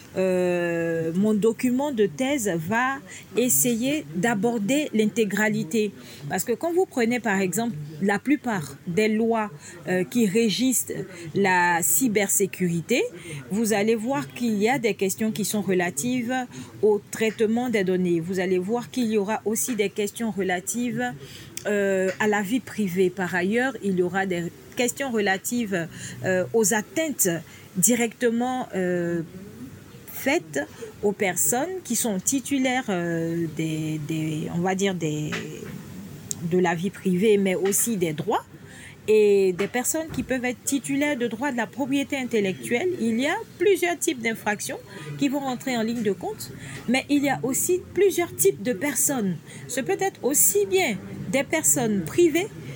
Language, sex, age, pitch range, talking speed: French, female, 40-59, 185-250 Hz, 150 wpm